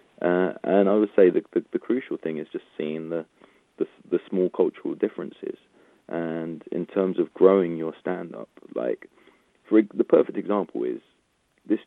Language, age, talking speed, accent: English, 40-59, 150 wpm, British